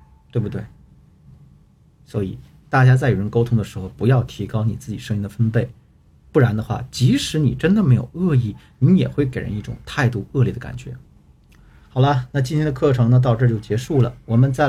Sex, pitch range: male, 115-150 Hz